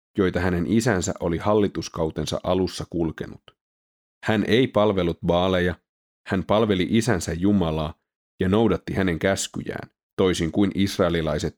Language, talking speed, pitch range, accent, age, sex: Finnish, 115 wpm, 80-105 Hz, native, 30-49, male